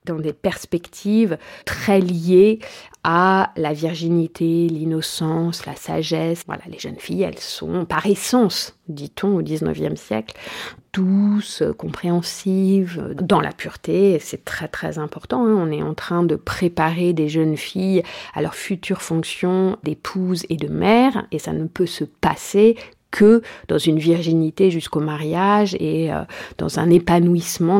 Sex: female